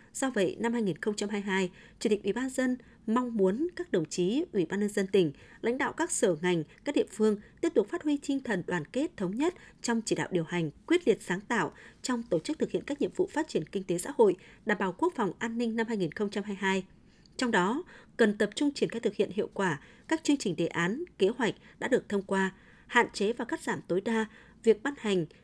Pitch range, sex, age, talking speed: 190-260 Hz, female, 20-39, 235 wpm